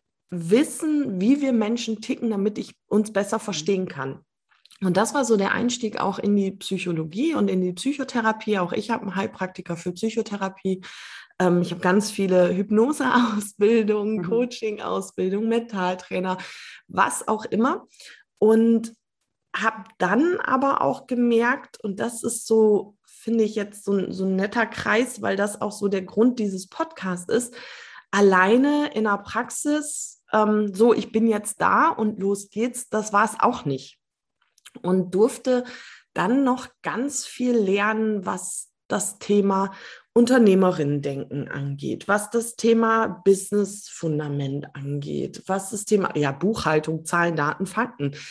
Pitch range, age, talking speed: 190-235 Hz, 20-39, 140 wpm